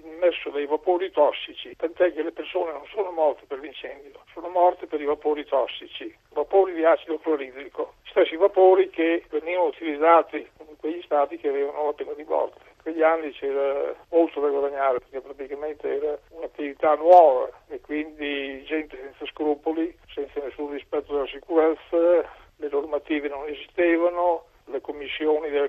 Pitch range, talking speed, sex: 145-180 Hz, 155 wpm, male